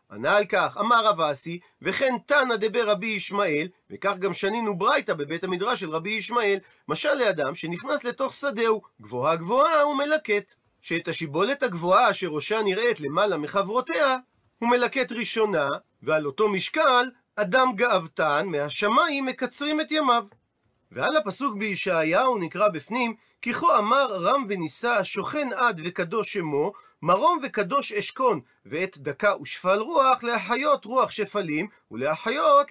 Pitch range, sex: 195-260 Hz, male